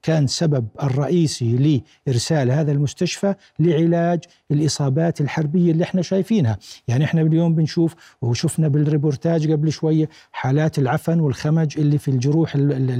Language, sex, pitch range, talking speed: Arabic, male, 140-170 Hz, 120 wpm